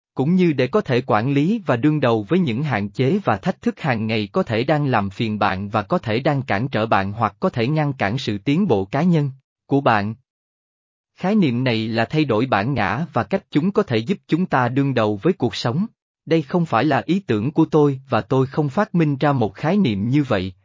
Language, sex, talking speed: Vietnamese, male, 245 wpm